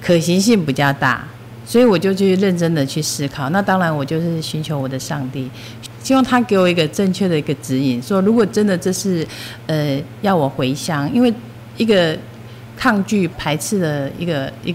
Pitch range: 125-170 Hz